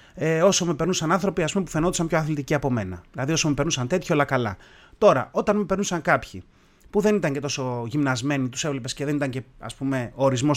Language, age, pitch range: Greek, 30-49, 130-195 Hz